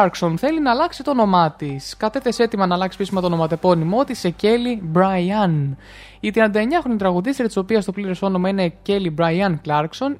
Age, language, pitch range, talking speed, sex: 20-39, Greek, 175-230 Hz, 175 wpm, male